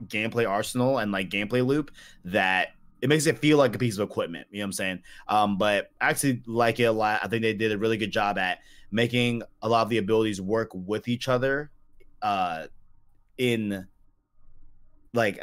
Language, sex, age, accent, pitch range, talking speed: English, male, 20-39, American, 100-120 Hz, 200 wpm